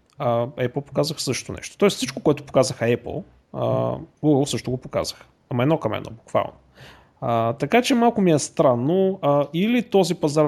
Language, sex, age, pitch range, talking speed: Bulgarian, male, 30-49, 120-170 Hz, 165 wpm